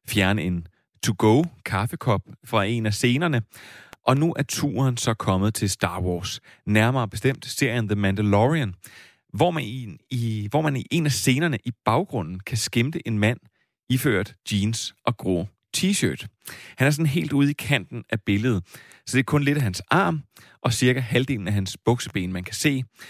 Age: 30-49